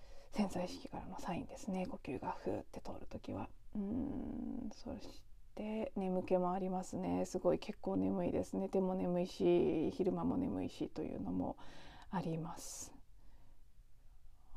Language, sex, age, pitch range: Japanese, female, 40-59, 185-260 Hz